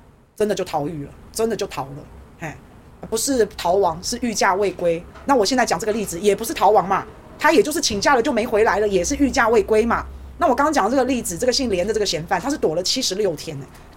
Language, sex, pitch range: Chinese, female, 195-265 Hz